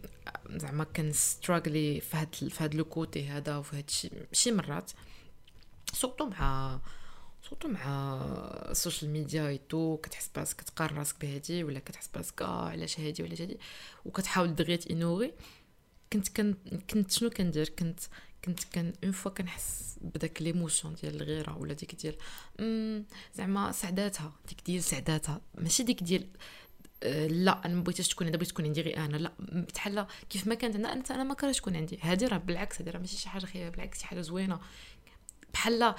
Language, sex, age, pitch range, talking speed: Arabic, female, 20-39, 155-200 Hz, 155 wpm